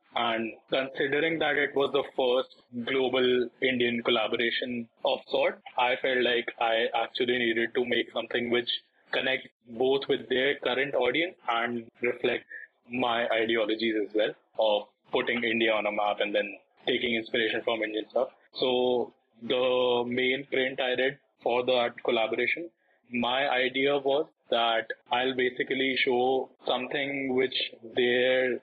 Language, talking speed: English, 140 wpm